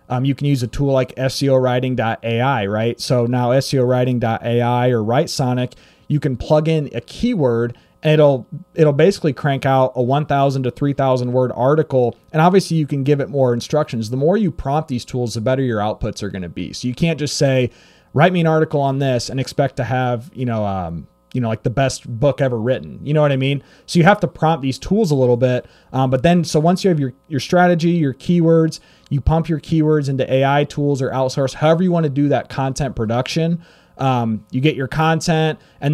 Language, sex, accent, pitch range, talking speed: English, male, American, 120-150 Hz, 220 wpm